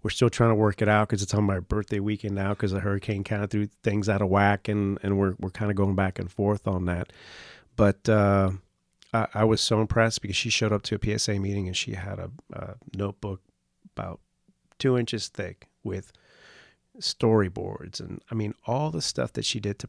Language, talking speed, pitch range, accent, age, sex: English, 220 wpm, 90-105 Hz, American, 40-59, male